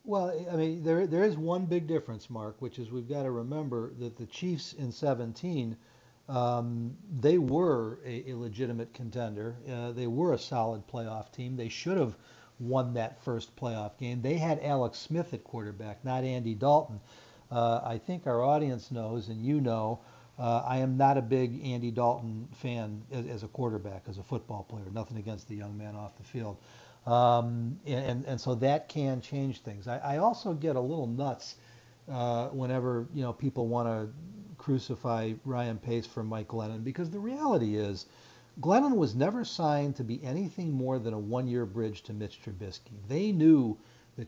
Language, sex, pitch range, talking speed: English, male, 115-140 Hz, 185 wpm